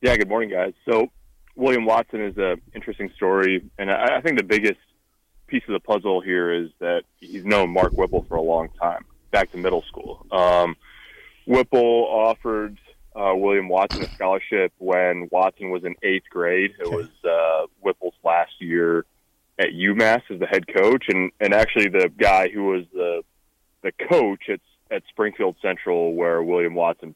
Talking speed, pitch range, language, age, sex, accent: 175 wpm, 85-100 Hz, English, 20-39, male, American